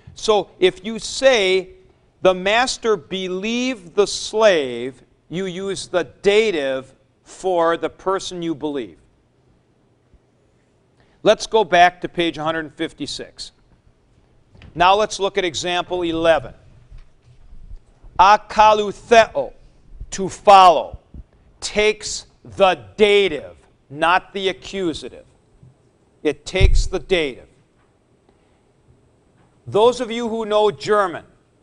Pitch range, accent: 140-205 Hz, American